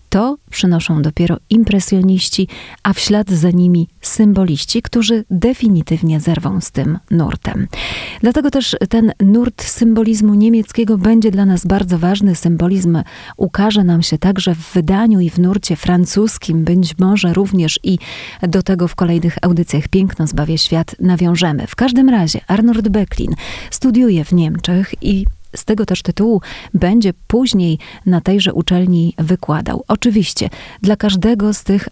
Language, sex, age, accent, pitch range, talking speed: Polish, female, 30-49, native, 175-215 Hz, 140 wpm